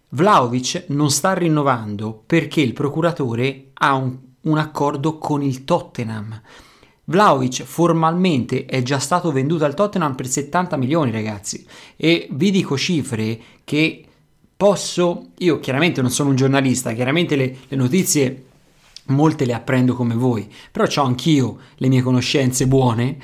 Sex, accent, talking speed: male, native, 140 wpm